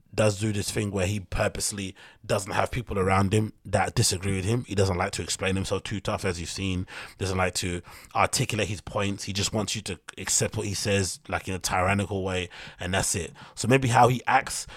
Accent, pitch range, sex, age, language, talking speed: British, 100-120 Hz, male, 30-49, English, 225 wpm